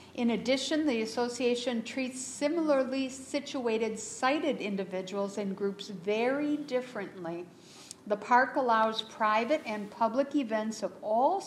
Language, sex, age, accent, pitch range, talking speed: English, female, 60-79, American, 205-265 Hz, 115 wpm